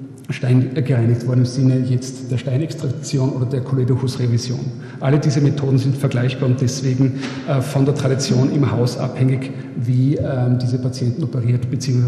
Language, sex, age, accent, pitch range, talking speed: German, male, 40-59, German, 130-145 Hz, 145 wpm